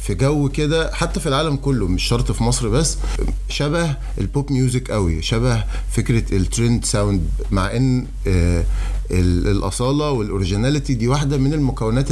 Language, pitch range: Arabic, 100-135 Hz